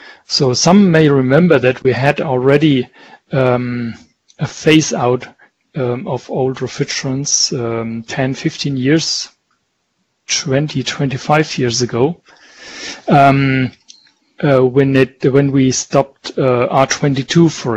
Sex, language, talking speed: male, English, 115 wpm